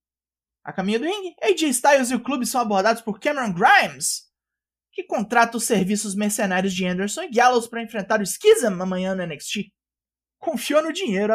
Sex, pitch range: male, 185-245 Hz